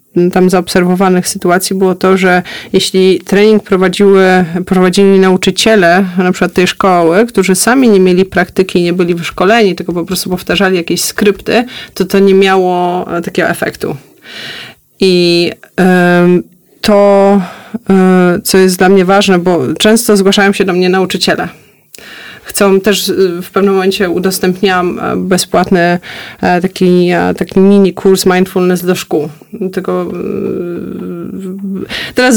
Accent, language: native, Polish